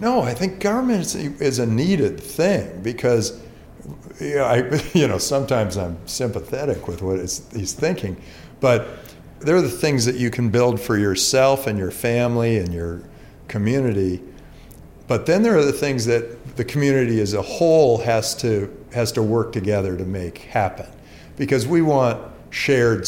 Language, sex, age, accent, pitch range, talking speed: English, male, 50-69, American, 100-120 Hz, 165 wpm